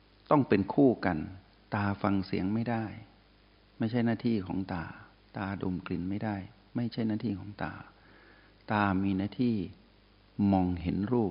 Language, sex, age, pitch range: Thai, male, 60-79, 95-115 Hz